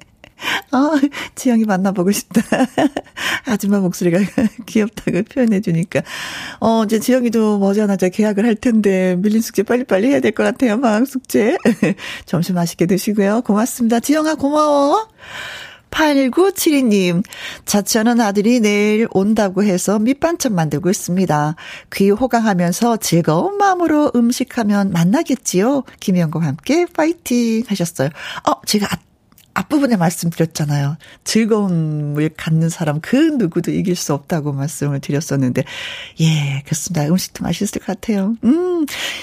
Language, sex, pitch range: Korean, female, 175-240 Hz